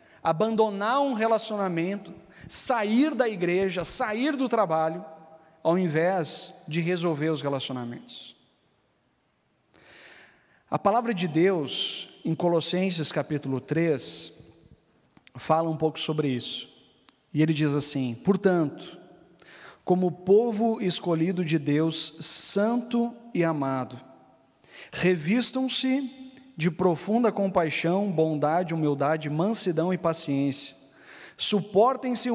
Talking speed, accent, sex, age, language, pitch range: 95 wpm, Brazilian, male, 40-59, Portuguese, 150-195 Hz